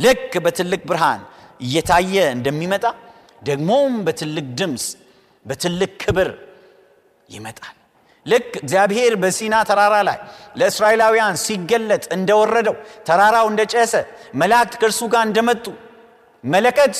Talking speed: 90 wpm